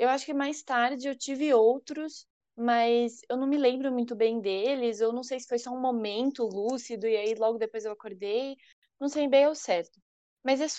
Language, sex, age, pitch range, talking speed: Portuguese, female, 20-39, 230-275 Hz, 210 wpm